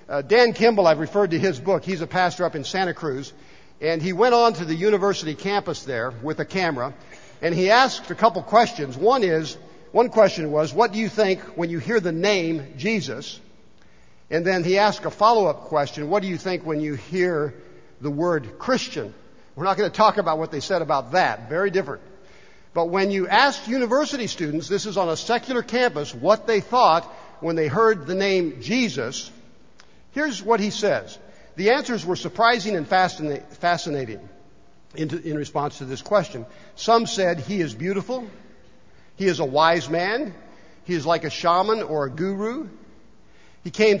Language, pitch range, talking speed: English, 155-215 Hz, 185 wpm